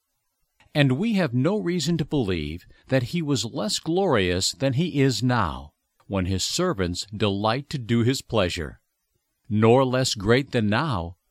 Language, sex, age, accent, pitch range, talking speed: English, male, 60-79, American, 105-160 Hz, 155 wpm